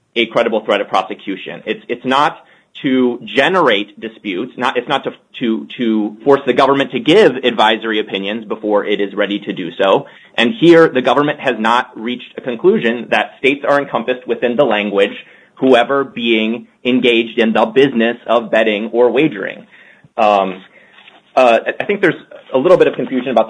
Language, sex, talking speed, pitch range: English, male, 175 wpm, 110-135 Hz